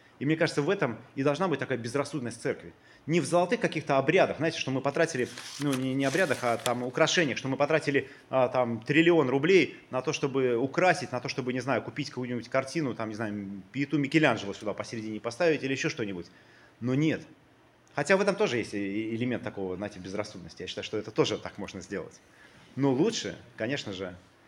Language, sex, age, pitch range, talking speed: Russian, male, 30-49, 115-145 Hz, 195 wpm